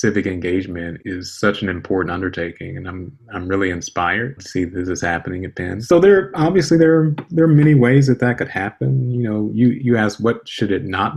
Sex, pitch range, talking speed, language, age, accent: male, 95-115 Hz, 220 wpm, English, 30-49, American